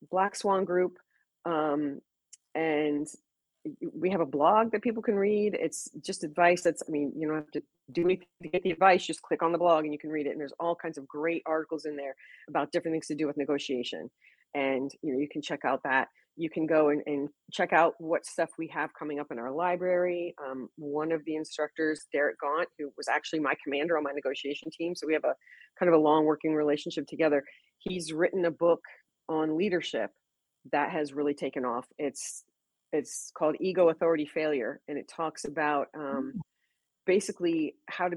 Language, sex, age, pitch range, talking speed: English, female, 30-49, 145-170 Hz, 205 wpm